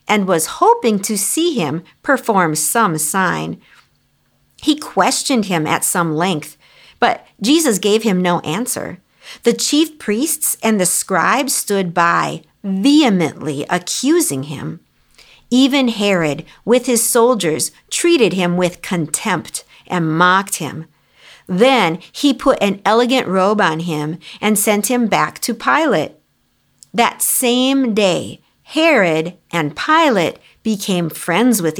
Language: English